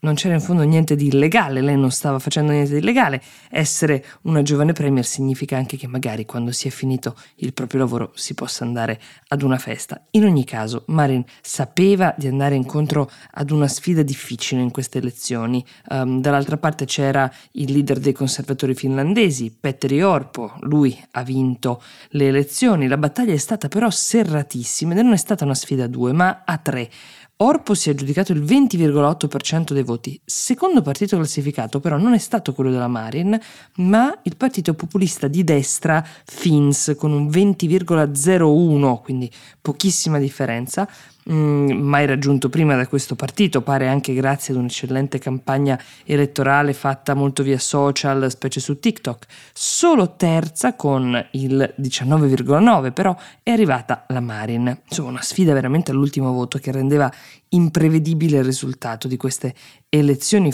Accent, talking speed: native, 155 wpm